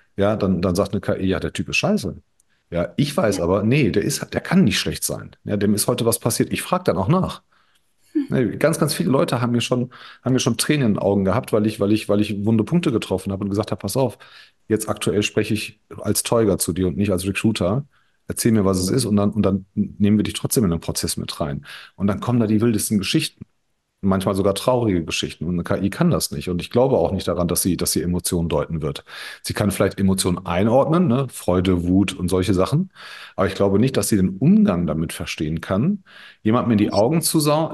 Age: 40-59